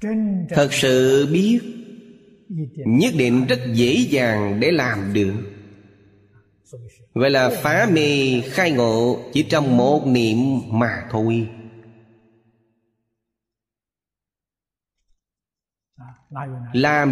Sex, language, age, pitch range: male, Vietnamese, 30-49, 115-155 Hz